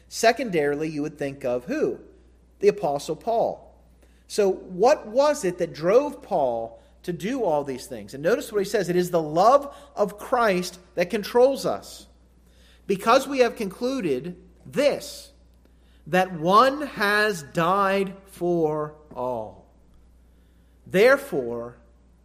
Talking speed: 125 wpm